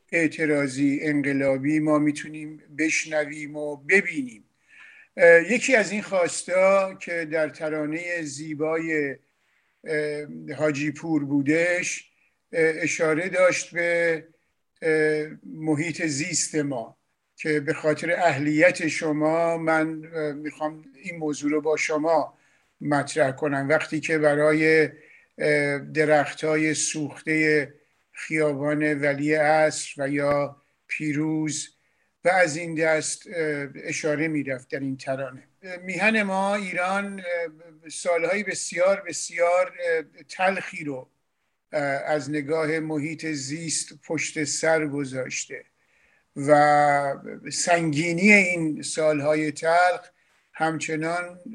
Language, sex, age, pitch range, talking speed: English, male, 50-69, 150-170 Hz, 95 wpm